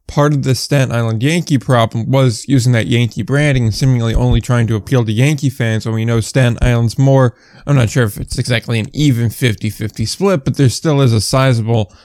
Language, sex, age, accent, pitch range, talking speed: English, male, 20-39, American, 120-140 Hz, 215 wpm